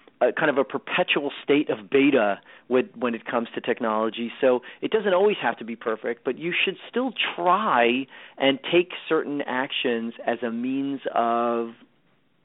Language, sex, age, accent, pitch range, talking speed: English, male, 40-59, American, 125-175 Hz, 170 wpm